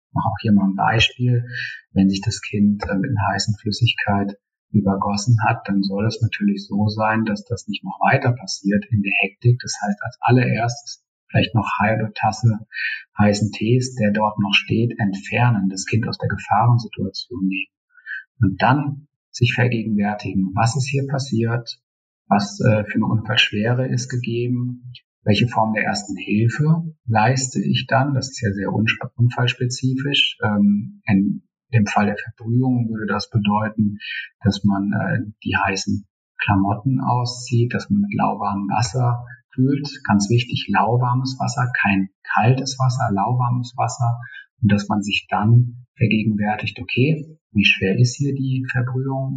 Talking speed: 150 wpm